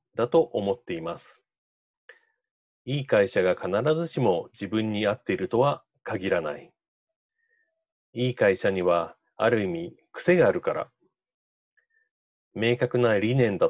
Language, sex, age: Japanese, male, 40-59